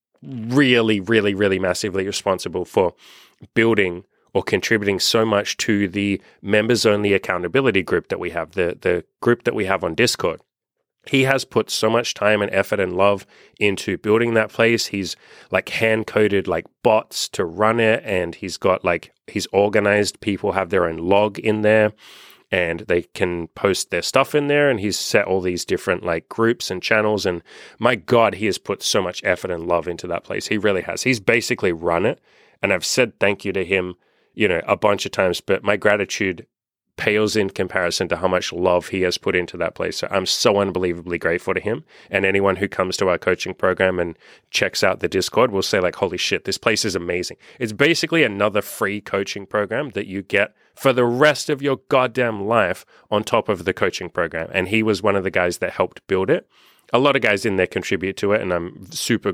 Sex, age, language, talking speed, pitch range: male, 30-49, English, 210 wpm, 95-110 Hz